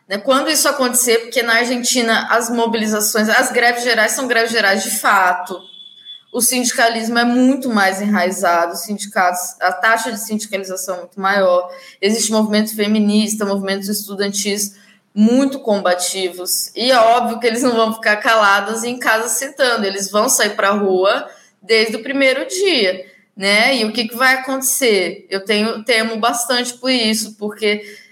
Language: Portuguese